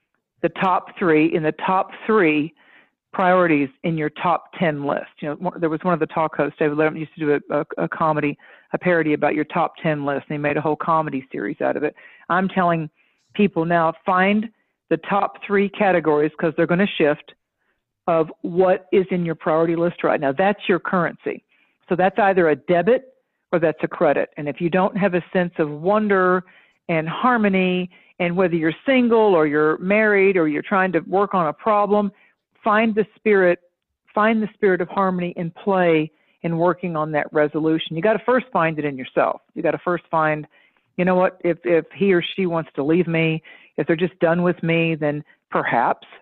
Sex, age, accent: female, 50-69, American